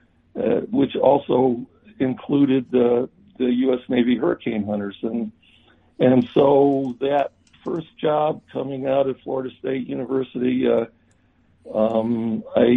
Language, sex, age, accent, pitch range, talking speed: English, male, 60-79, American, 120-165 Hz, 115 wpm